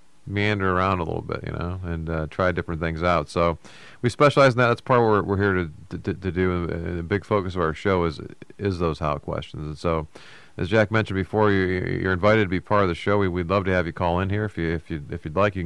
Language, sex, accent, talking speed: English, male, American, 280 wpm